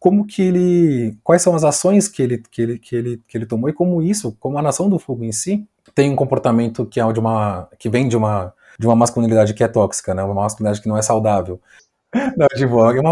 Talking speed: 245 wpm